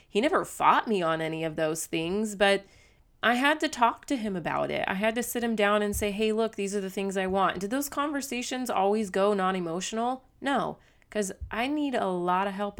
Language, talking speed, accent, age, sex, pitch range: English, 225 wpm, American, 30-49, female, 170-205 Hz